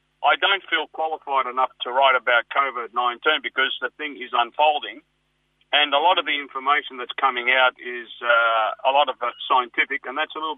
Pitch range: 130-175 Hz